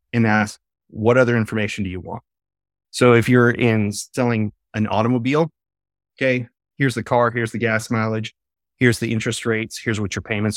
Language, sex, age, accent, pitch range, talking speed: English, male, 30-49, American, 100-120 Hz, 175 wpm